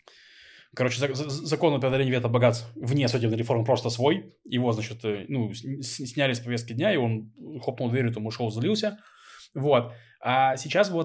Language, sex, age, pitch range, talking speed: Russian, male, 20-39, 120-145 Hz, 155 wpm